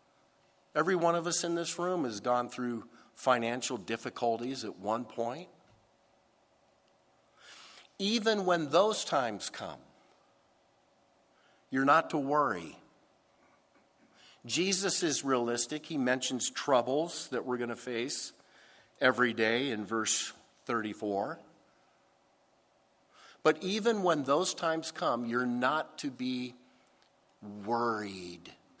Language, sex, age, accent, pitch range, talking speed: English, male, 50-69, American, 115-160 Hz, 105 wpm